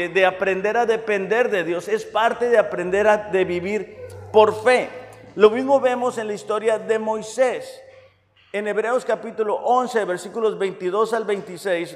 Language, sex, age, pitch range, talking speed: Spanish, male, 50-69, 185-235 Hz, 155 wpm